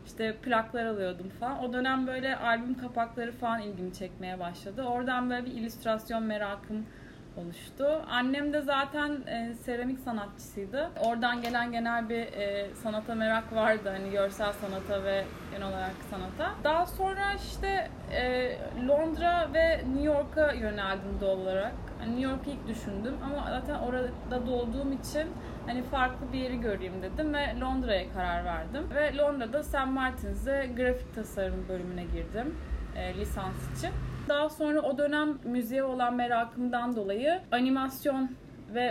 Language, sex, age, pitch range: Turkish, female, 20-39, 210-265 Hz